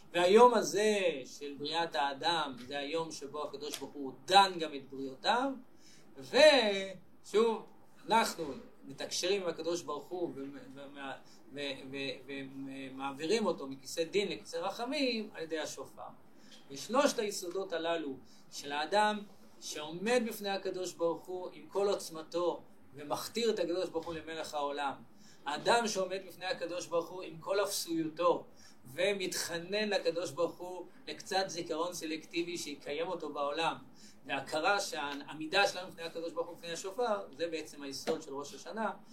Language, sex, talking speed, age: Hebrew, male, 140 wpm, 30-49